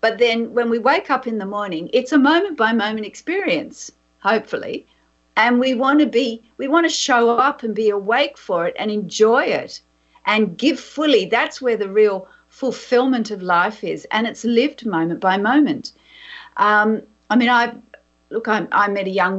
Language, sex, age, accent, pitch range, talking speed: English, female, 50-69, Australian, 200-260 Hz, 185 wpm